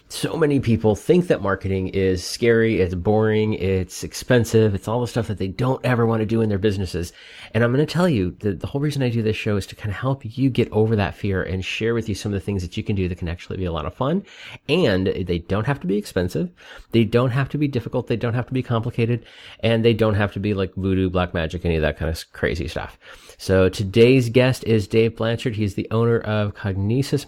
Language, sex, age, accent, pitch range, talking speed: English, male, 30-49, American, 95-125 Hz, 255 wpm